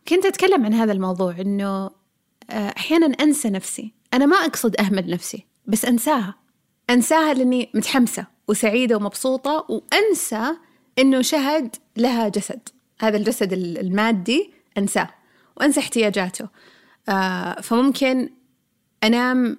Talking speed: 105 wpm